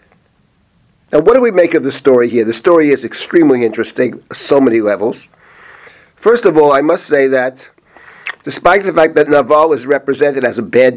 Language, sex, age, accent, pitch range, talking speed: English, male, 50-69, American, 140-220 Hz, 185 wpm